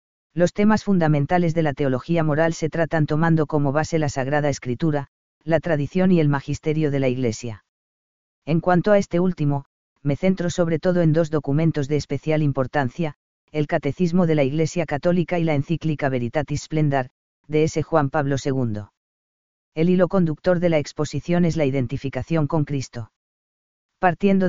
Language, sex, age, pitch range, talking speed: Spanish, female, 40-59, 145-170 Hz, 160 wpm